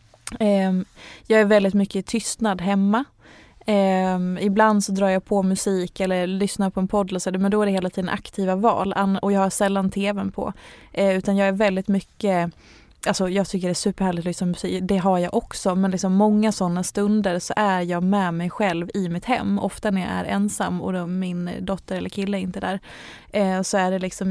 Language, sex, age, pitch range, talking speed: Swedish, female, 20-39, 185-205 Hz, 200 wpm